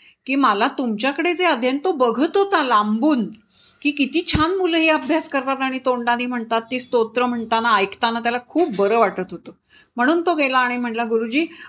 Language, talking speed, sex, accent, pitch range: Marathi, 175 wpm, female, native, 215-300 Hz